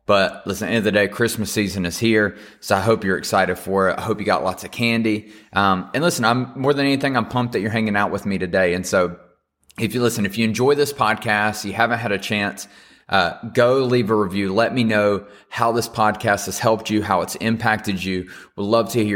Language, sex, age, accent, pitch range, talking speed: English, male, 30-49, American, 95-115 Hz, 240 wpm